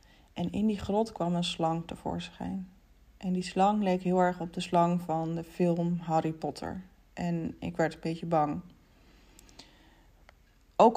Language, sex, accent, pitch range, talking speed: Dutch, female, Dutch, 175-210 Hz, 160 wpm